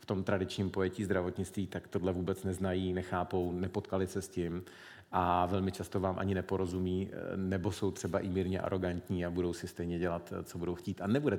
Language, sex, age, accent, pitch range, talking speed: Czech, male, 40-59, native, 95-115 Hz, 190 wpm